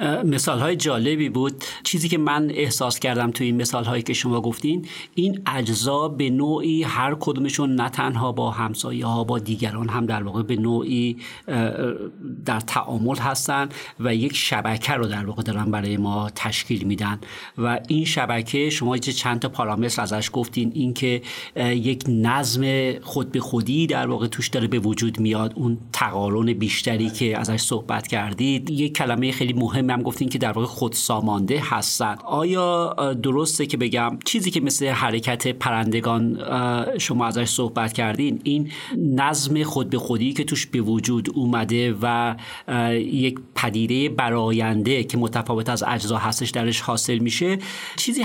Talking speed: 155 wpm